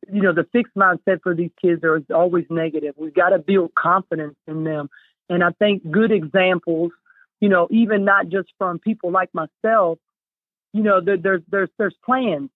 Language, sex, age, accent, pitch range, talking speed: English, male, 40-59, American, 180-225 Hz, 180 wpm